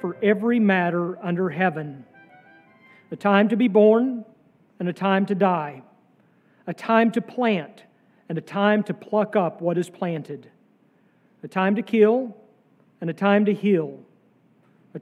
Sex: male